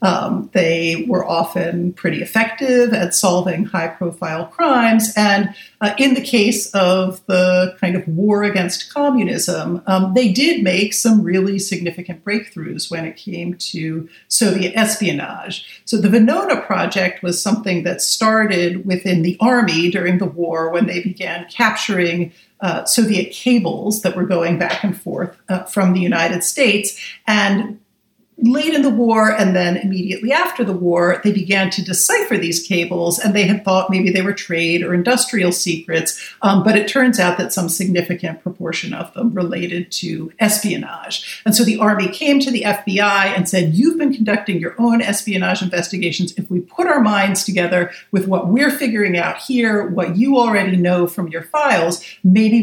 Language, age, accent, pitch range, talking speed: English, 50-69, American, 175-215 Hz, 170 wpm